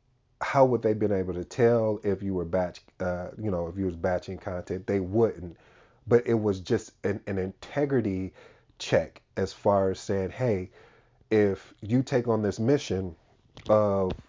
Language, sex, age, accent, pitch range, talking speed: English, male, 30-49, American, 95-120 Hz, 170 wpm